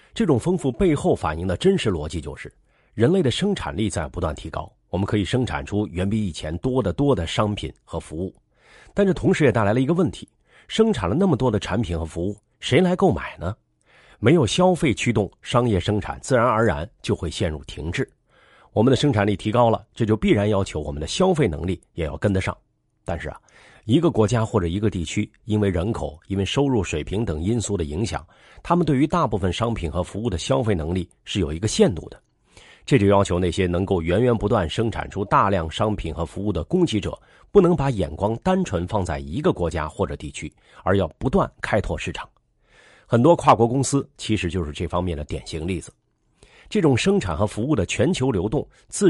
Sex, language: male, Chinese